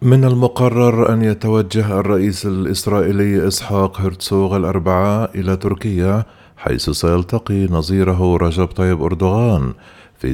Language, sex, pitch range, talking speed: Arabic, male, 80-100 Hz, 105 wpm